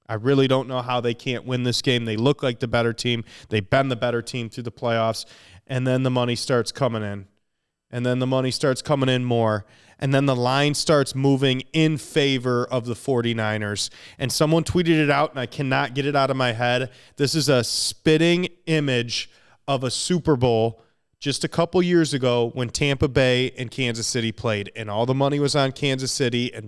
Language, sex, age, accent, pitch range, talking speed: English, male, 30-49, American, 120-140 Hz, 210 wpm